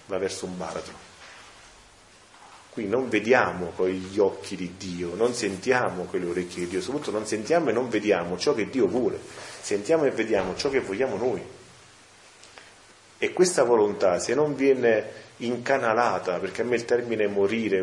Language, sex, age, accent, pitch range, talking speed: Italian, male, 30-49, native, 95-125 Hz, 160 wpm